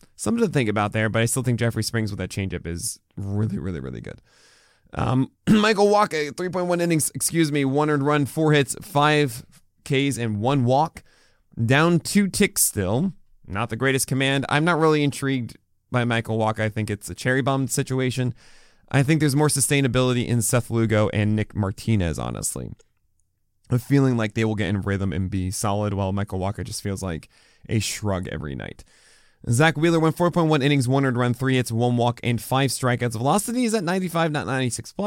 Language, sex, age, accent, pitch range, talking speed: English, male, 20-39, American, 105-145 Hz, 185 wpm